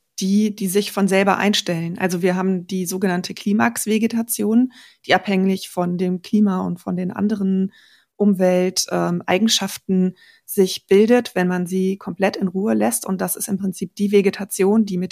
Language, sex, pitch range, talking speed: German, female, 180-205 Hz, 160 wpm